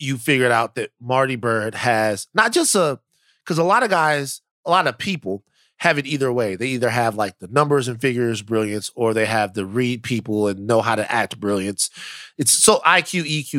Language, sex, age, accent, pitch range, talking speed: English, male, 30-49, American, 115-165 Hz, 210 wpm